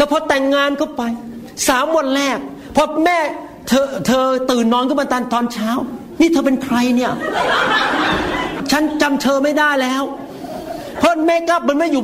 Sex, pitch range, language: male, 235-310 Hz, Thai